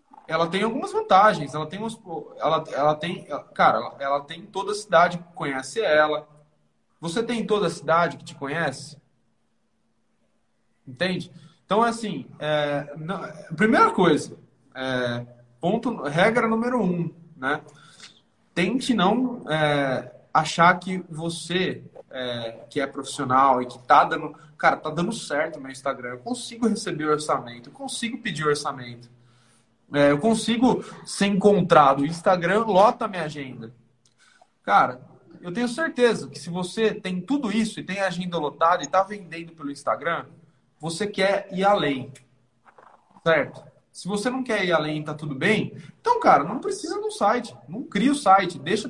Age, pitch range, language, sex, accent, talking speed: 20-39, 145-215 Hz, Portuguese, male, Brazilian, 140 wpm